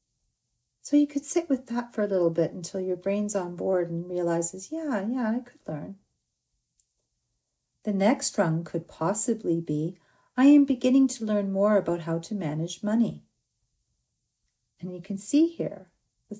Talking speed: 165 wpm